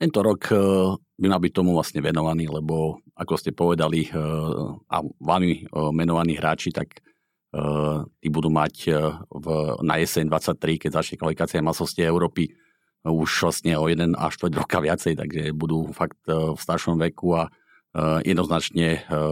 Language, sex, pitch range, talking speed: Slovak, male, 80-90 Hz, 145 wpm